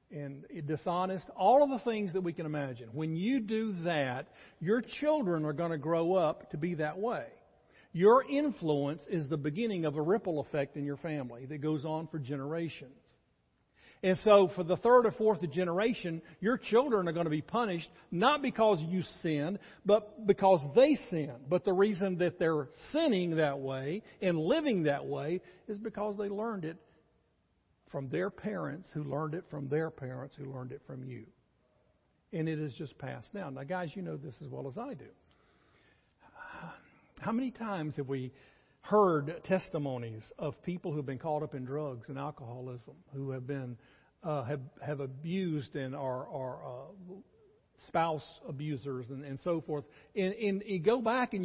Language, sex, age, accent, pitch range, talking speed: English, male, 50-69, American, 145-200 Hz, 180 wpm